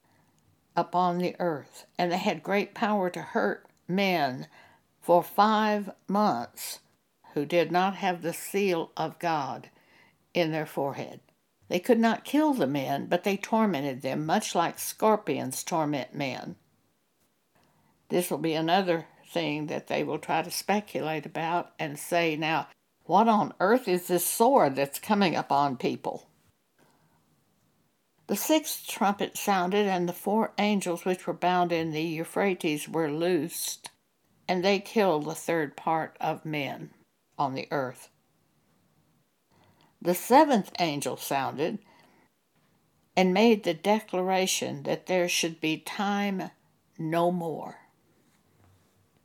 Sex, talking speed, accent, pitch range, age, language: female, 130 wpm, American, 160-200 Hz, 60-79, English